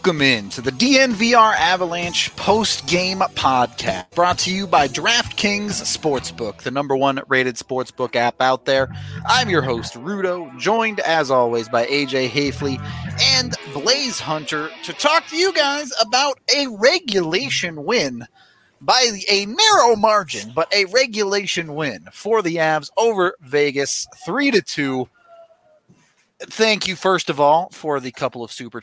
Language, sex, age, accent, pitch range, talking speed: English, male, 30-49, American, 135-210 Hz, 140 wpm